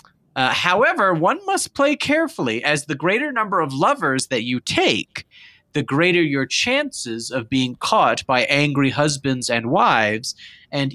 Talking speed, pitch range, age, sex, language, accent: 155 wpm, 130-180 Hz, 30-49, male, English, American